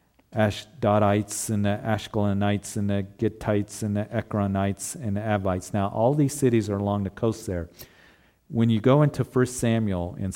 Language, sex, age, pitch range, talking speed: English, male, 50-69, 95-115 Hz, 170 wpm